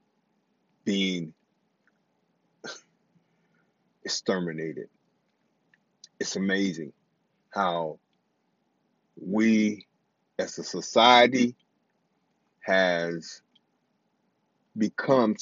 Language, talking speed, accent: English, 45 wpm, American